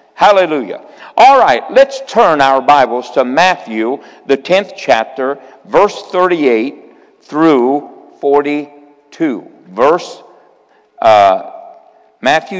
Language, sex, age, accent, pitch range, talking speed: English, male, 50-69, American, 120-165 Hz, 90 wpm